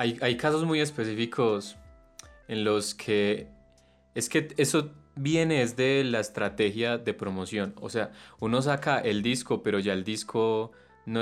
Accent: Colombian